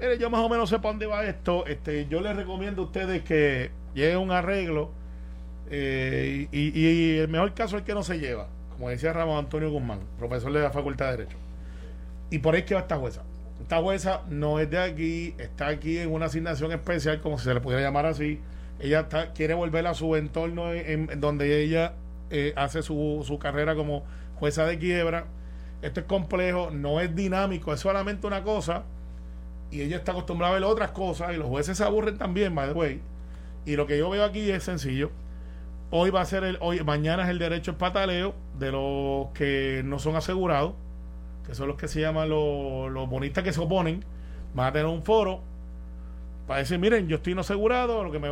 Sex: male